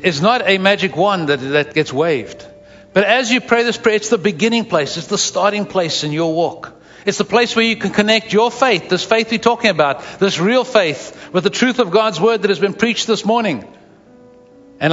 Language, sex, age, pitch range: English, male, 60-79, 150-220 Hz